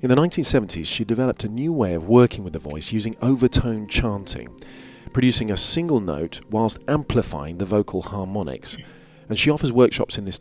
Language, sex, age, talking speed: English, male, 40-59, 180 wpm